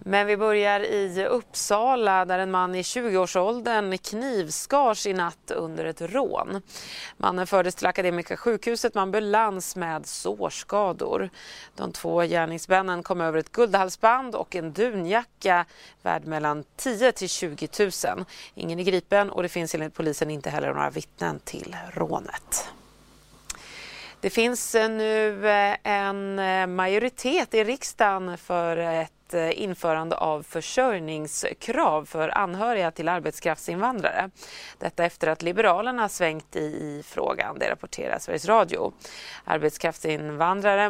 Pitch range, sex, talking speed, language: 165-205 Hz, female, 120 wpm, Swedish